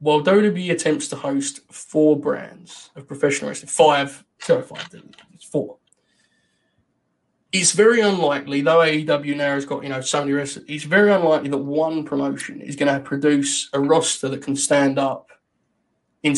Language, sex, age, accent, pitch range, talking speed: English, male, 20-39, British, 145-190 Hz, 165 wpm